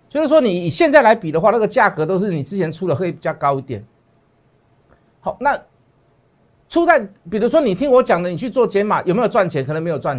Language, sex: Chinese, male